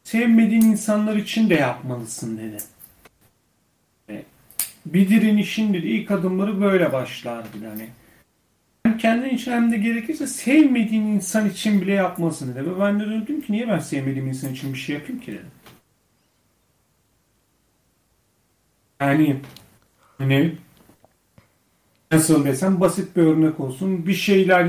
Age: 40-59